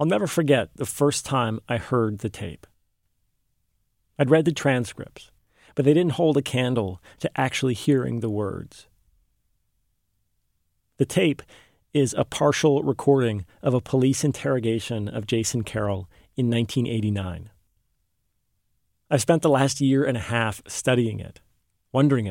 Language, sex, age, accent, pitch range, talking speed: English, male, 40-59, American, 105-140 Hz, 135 wpm